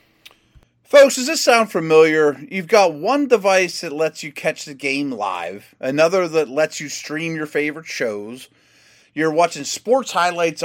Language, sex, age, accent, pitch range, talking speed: English, male, 30-49, American, 135-180 Hz, 160 wpm